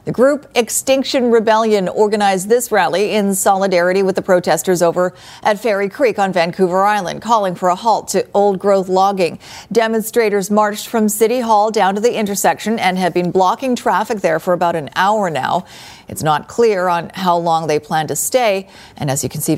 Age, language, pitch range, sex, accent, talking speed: 40-59, English, 175-220 Hz, female, American, 190 wpm